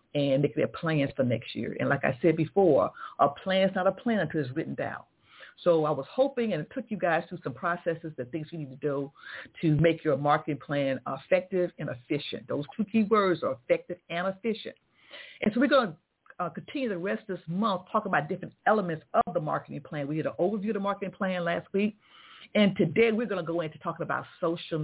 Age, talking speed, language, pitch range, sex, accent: 50-69, 230 wpm, English, 160-205 Hz, female, American